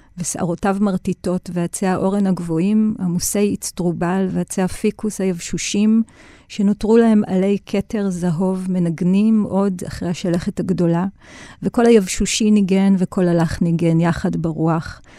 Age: 40-59